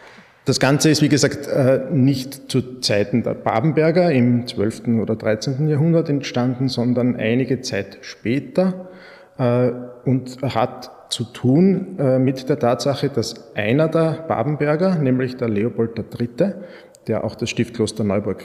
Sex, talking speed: male, 130 wpm